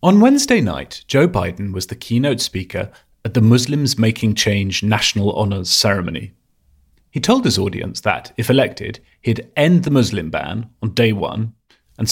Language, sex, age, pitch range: English, male, 30-49, 95-125 Hz